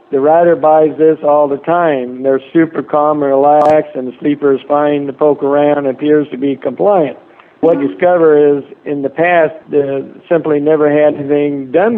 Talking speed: 190 wpm